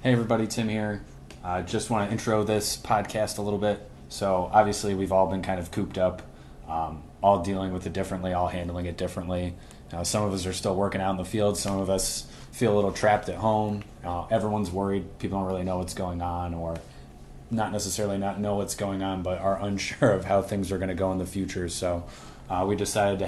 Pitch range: 90-105 Hz